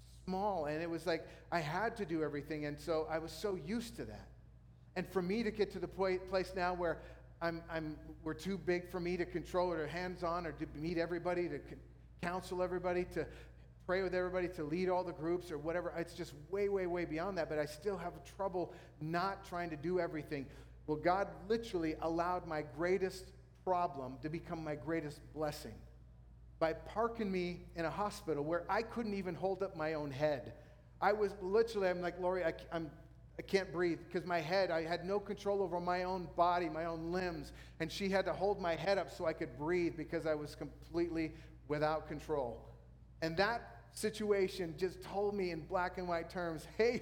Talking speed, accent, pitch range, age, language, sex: 200 wpm, American, 160-195 Hz, 40-59, English, male